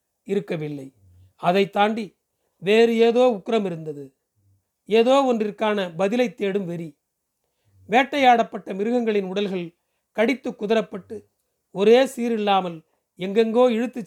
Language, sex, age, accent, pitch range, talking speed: Tamil, male, 40-59, native, 175-230 Hz, 95 wpm